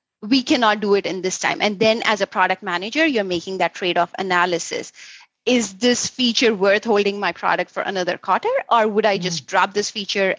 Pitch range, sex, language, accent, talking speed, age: 190-225 Hz, female, English, Indian, 200 wpm, 30-49